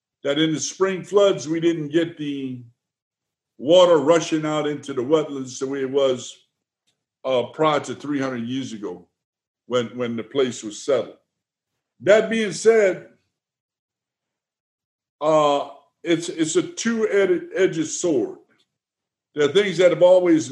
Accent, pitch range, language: American, 145-185 Hz, English